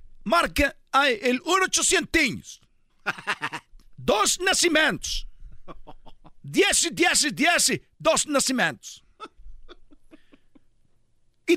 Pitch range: 255-325 Hz